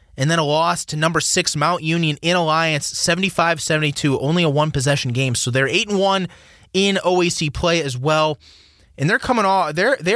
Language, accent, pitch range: English, American, 120-165 Hz